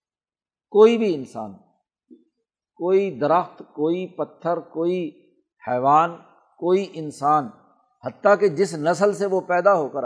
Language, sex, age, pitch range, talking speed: Urdu, male, 50-69, 155-200 Hz, 120 wpm